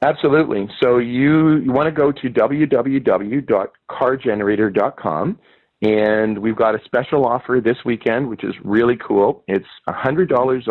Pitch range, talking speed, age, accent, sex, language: 100-125 Hz, 135 wpm, 40-59, American, male, English